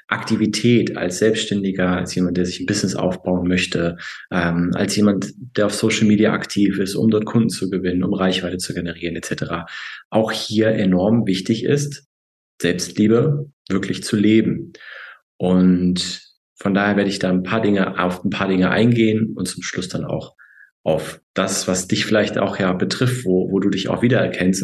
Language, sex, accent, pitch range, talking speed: German, male, German, 90-115 Hz, 175 wpm